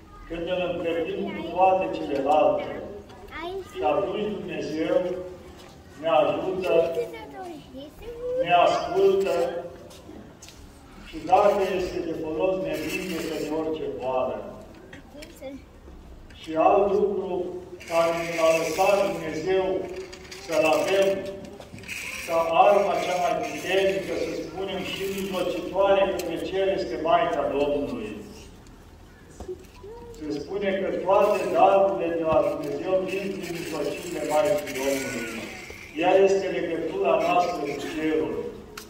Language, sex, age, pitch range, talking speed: Romanian, male, 50-69, 160-195 Hz, 100 wpm